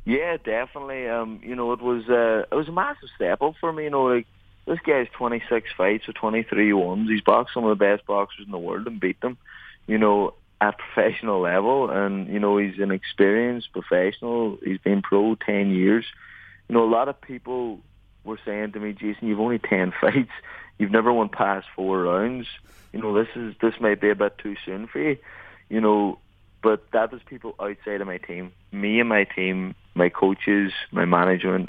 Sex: male